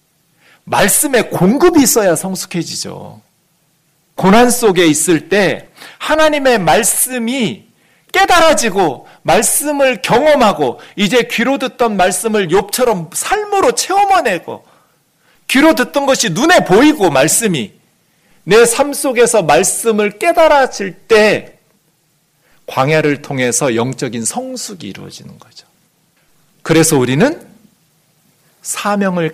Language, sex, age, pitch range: Korean, male, 40-59, 160-250 Hz